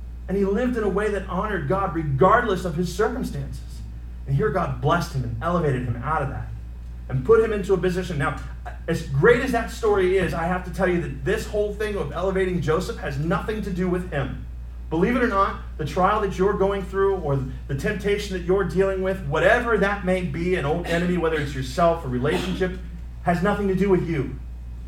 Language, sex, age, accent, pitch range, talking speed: English, male, 30-49, American, 115-185 Hz, 215 wpm